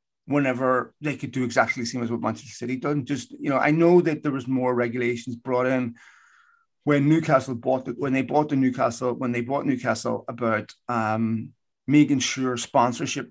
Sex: male